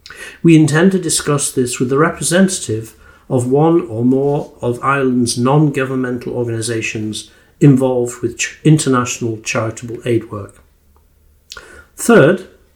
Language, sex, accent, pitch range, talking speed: English, male, British, 115-150 Hz, 110 wpm